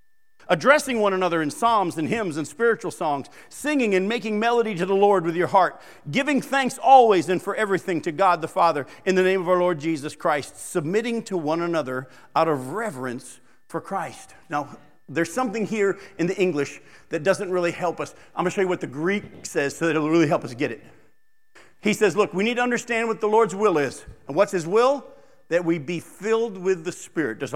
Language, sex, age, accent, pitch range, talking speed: English, male, 50-69, American, 170-235 Hz, 220 wpm